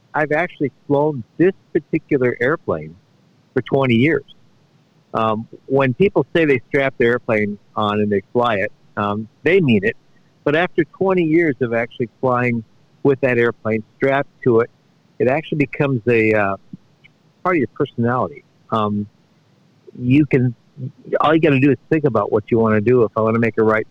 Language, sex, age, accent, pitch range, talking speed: English, male, 60-79, American, 110-145 Hz, 175 wpm